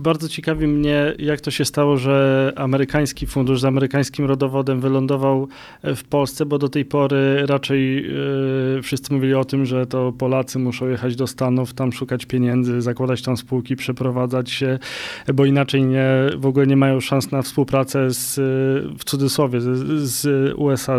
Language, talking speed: Polish, 155 wpm